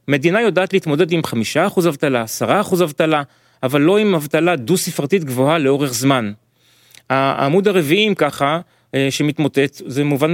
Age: 30-49